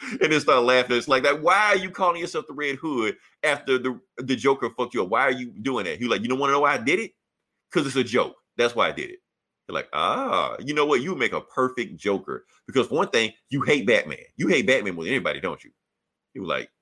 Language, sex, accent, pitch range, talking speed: English, male, American, 120-175 Hz, 280 wpm